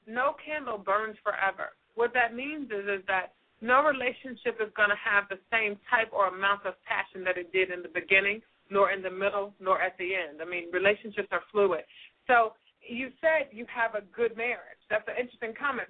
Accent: American